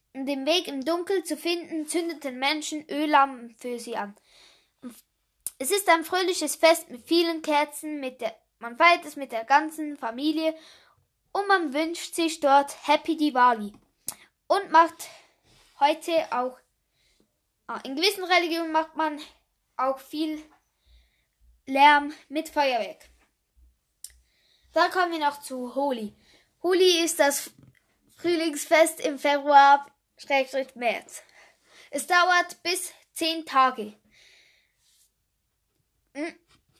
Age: 10-29